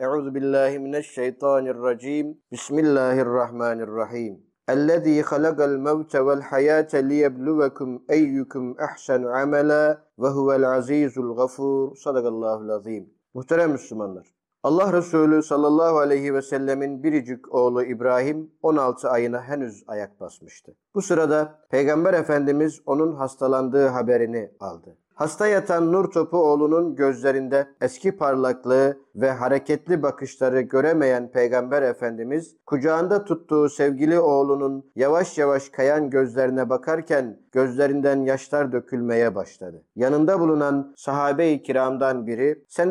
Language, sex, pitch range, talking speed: Turkish, male, 130-150 Hz, 105 wpm